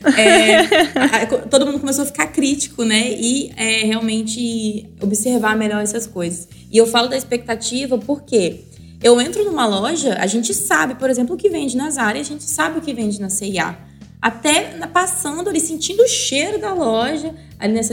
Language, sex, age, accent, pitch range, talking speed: Portuguese, female, 20-39, Brazilian, 220-285 Hz, 175 wpm